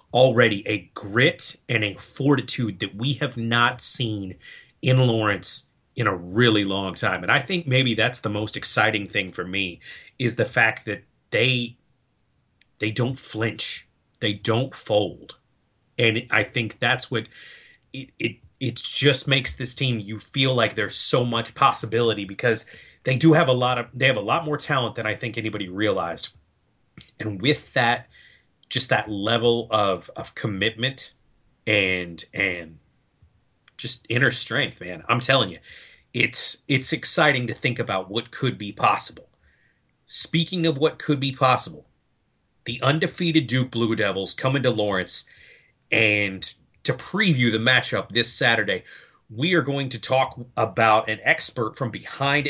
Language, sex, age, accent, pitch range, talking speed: English, male, 30-49, American, 110-135 Hz, 155 wpm